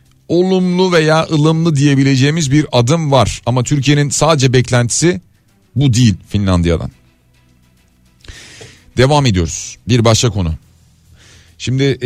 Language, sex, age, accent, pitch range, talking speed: Turkish, male, 40-59, native, 100-145 Hz, 100 wpm